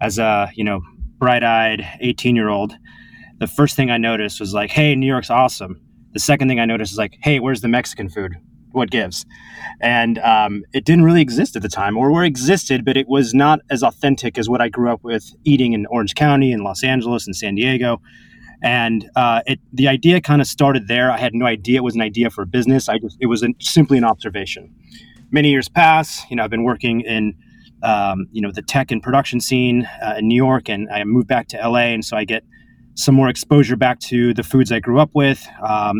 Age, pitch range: 30-49, 110-135 Hz